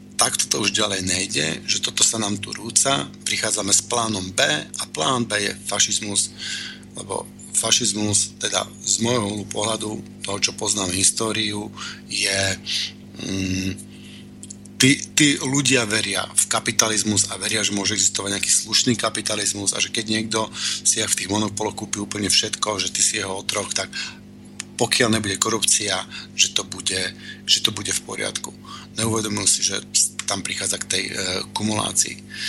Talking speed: 155 wpm